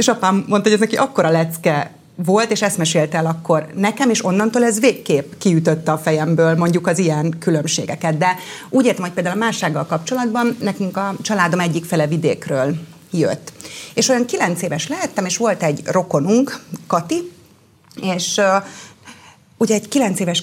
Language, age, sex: Hungarian, 30-49, female